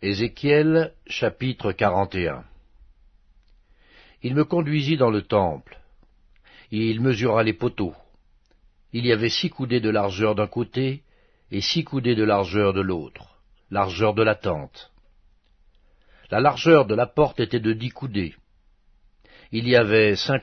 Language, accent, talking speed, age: French, French, 140 wpm, 60-79